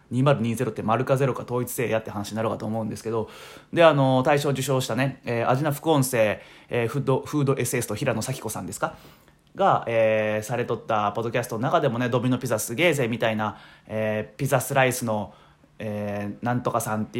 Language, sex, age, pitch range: Japanese, male, 20-39, 110-135 Hz